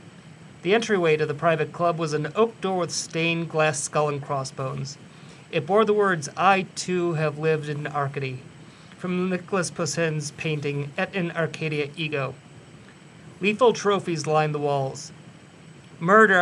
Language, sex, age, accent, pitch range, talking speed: English, male, 40-59, American, 150-180 Hz, 145 wpm